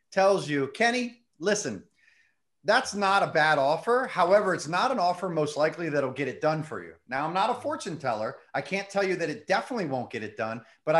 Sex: male